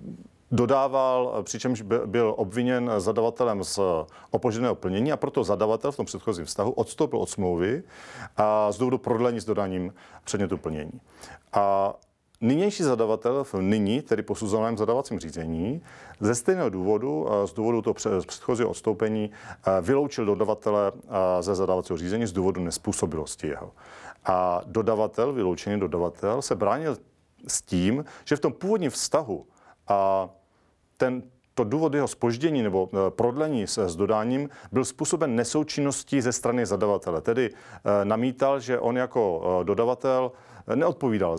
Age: 40-59